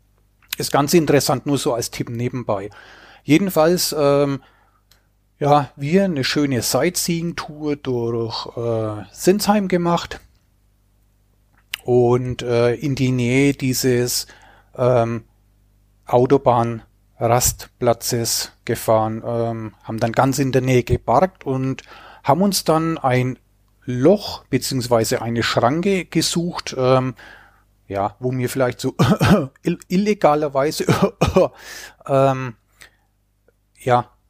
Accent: German